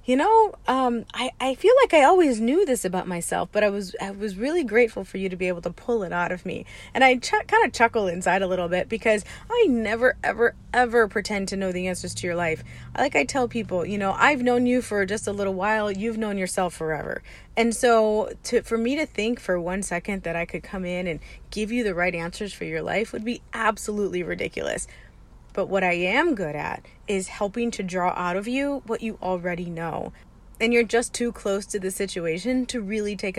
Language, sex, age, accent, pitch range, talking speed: English, female, 30-49, American, 180-235 Hz, 230 wpm